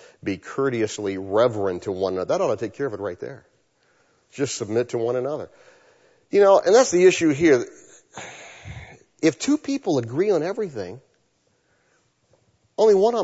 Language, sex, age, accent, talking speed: English, male, 40-59, American, 165 wpm